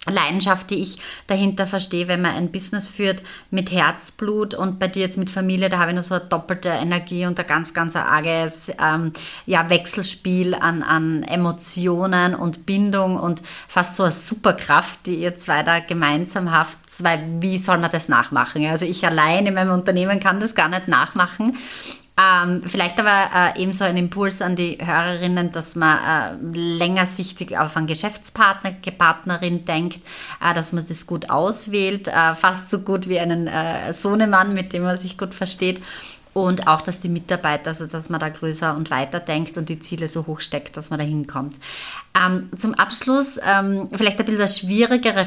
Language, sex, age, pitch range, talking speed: German, female, 30-49, 170-195 Hz, 180 wpm